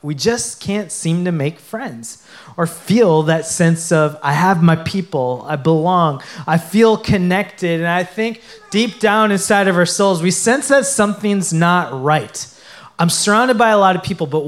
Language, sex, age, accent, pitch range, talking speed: English, male, 20-39, American, 165-205 Hz, 180 wpm